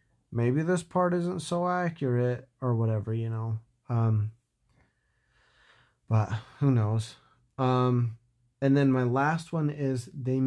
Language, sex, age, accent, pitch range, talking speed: English, male, 30-49, American, 115-130 Hz, 125 wpm